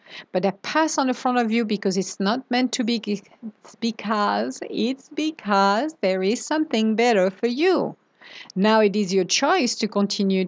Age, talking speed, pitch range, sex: 50-69, 180 wpm, 195-260 Hz, female